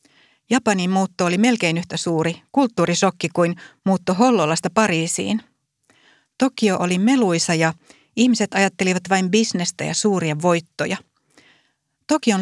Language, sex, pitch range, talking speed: Finnish, female, 175-230 Hz, 110 wpm